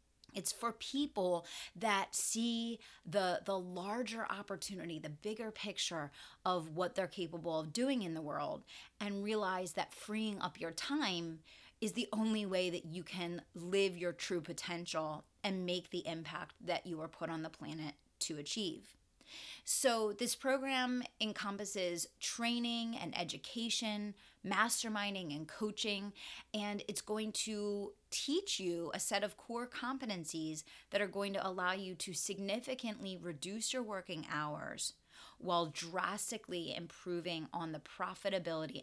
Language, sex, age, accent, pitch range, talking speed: English, female, 30-49, American, 170-210 Hz, 140 wpm